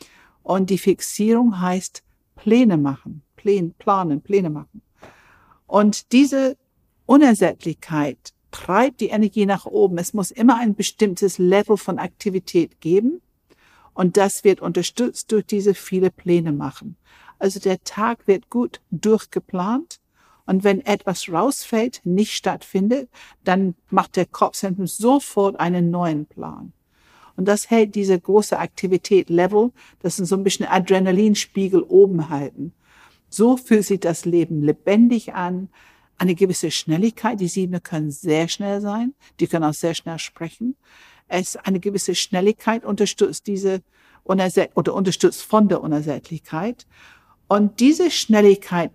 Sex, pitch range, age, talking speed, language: female, 175-215 Hz, 60-79, 130 wpm, German